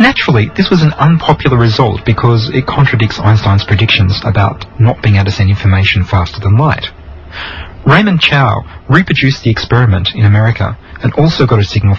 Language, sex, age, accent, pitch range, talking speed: English, male, 30-49, Australian, 95-135 Hz, 165 wpm